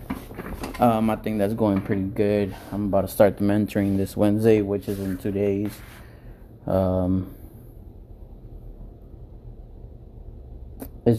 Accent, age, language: American, 20-39, English